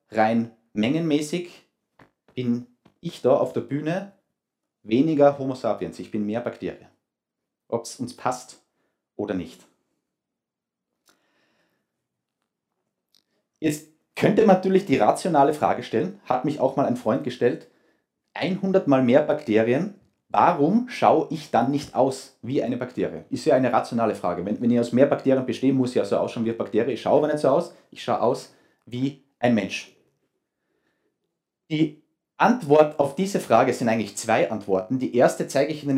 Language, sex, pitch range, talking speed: German, male, 120-155 Hz, 155 wpm